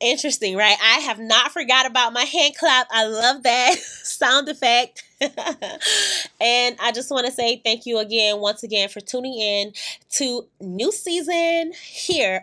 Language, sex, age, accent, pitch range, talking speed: English, female, 20-39, American, 230-330 Hz, 160 wpm